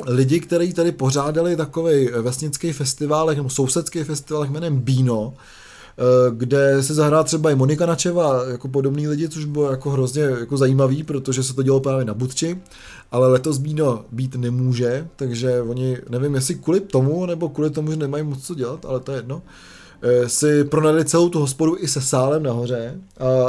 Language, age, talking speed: Czech, 20-39, 175 wpm